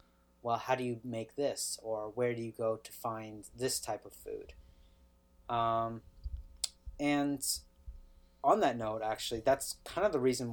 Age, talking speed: 30-49, 160 wpm